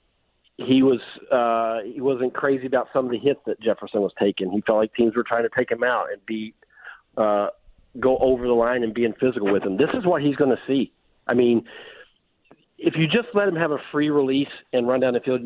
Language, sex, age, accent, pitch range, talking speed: English, male, 40-59, American, 110-135 Hz, 235 wpm